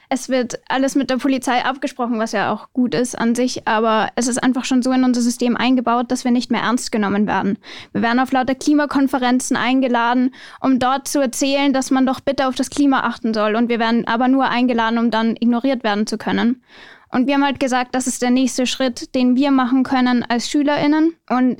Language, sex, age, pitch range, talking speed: German, female, 10-29, 240-265 Hz, 220 wpm